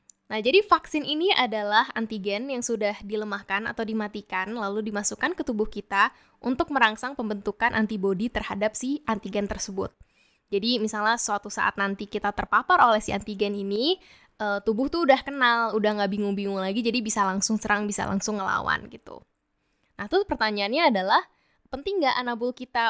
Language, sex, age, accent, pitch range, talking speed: Indonesian, female, 10-29, native, 205-245 Hz, 155 wpm